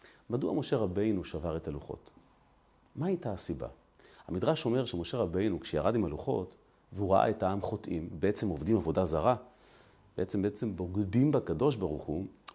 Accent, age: native, 40-59